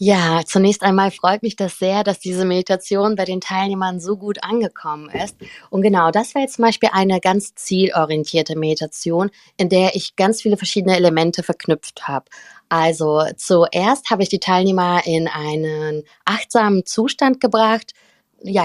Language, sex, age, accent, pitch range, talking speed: German, female, 20-39, German, 175-210 Hz, 160 wpm